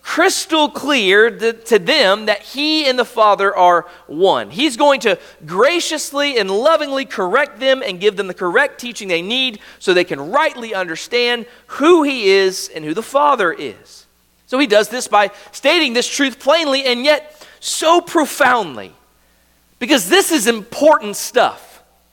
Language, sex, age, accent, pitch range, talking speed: English, male, 40-59, American, 210-285 Hz, 155 wpm